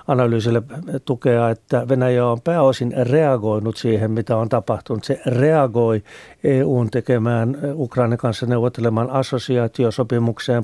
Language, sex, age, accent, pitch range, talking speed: Finnish, male, 50-69, native, 115-130 Hz, 105 wpm